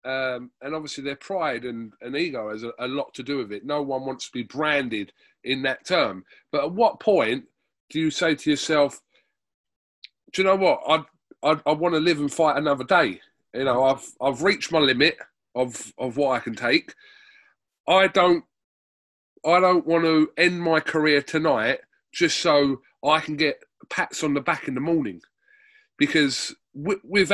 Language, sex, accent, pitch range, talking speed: English, male, British, 125-175 Hz, 185 wpm